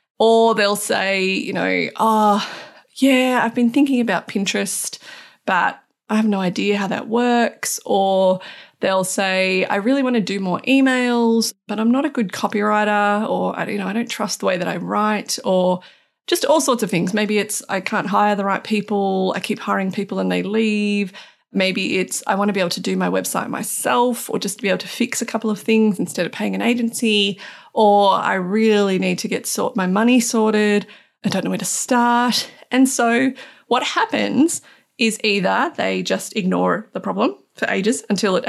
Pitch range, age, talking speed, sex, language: 190-235 Hz, 30-49, 200 wpm, female, English